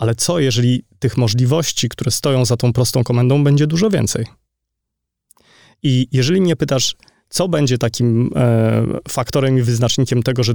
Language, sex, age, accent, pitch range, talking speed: Polish, male, 30-49, native, 115-135 Hz, 150 wpm